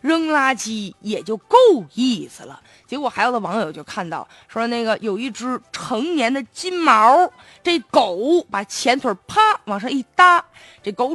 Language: Chinese